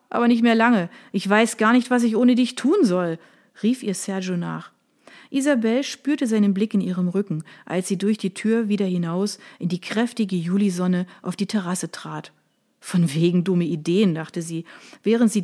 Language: German